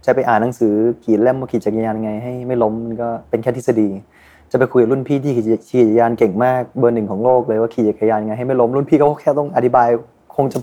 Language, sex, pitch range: Thai, male, 110-135 Hz